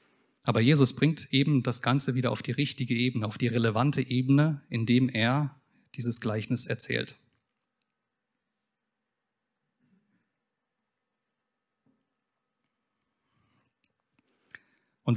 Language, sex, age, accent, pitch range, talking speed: German, male, 40-59, German, 120-140 Hz, 85 wpm